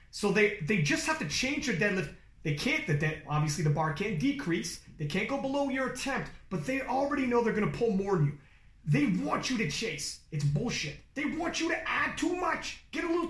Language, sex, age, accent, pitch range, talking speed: English, male, 30-49, American, 160-245 Hz, 235 wpm